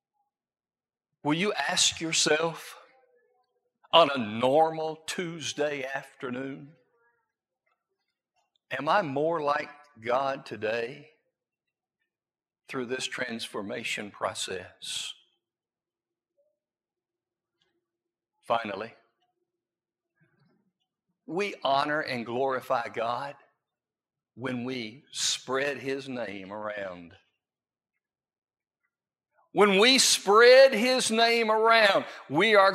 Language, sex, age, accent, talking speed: English, male, 60-79, American, 70 wpm